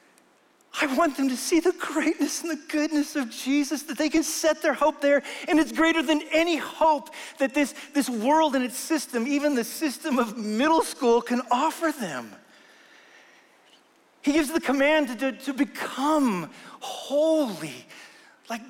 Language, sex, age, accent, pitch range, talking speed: English, male, 40-59, American, 220-285 Hz, 160 wpm